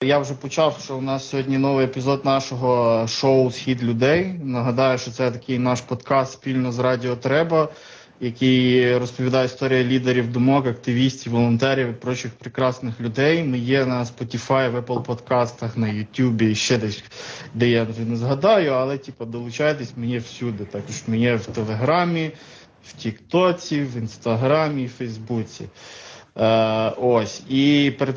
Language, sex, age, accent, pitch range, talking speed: Ukrainian, male, 20-39, native, 120-135 Hz, 145 wpm